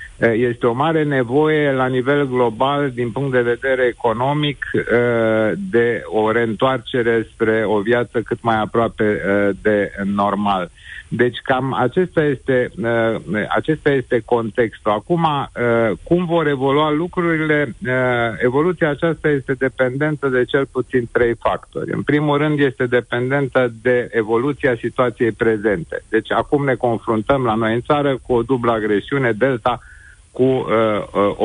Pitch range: 115-140 Hz